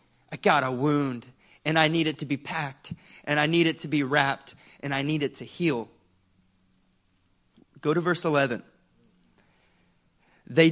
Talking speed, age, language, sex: 160 wpm, 30-49, English, male